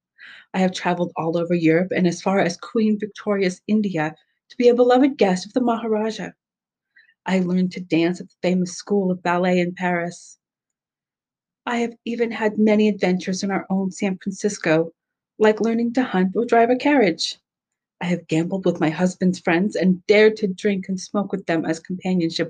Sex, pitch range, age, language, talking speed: female, 170-215 Hz, 40-59, English, 185 wpm